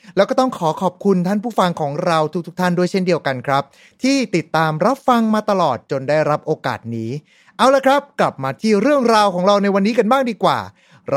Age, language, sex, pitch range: 30-49, Thai, male, 155-225 Hz